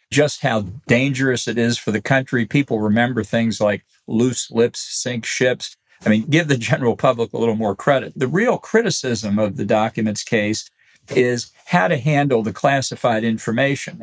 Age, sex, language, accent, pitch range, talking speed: 50-69, male, English, American, 110-135 Hz, 170 wpm